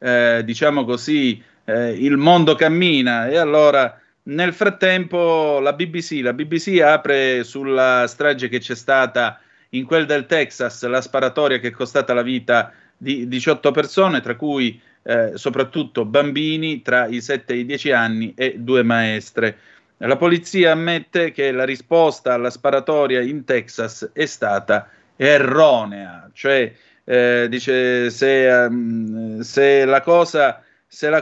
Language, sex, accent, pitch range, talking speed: Italian, male, native, 120-150 Hz, 135 wpm